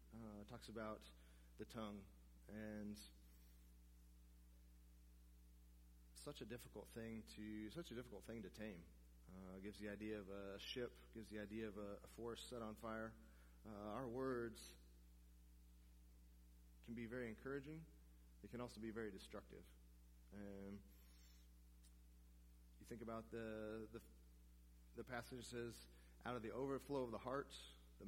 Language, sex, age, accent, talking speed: English, male, 30-49, American, 135 wpm